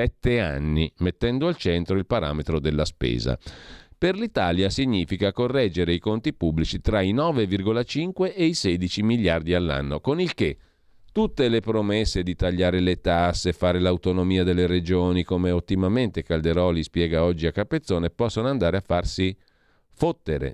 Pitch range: 80-105 Hz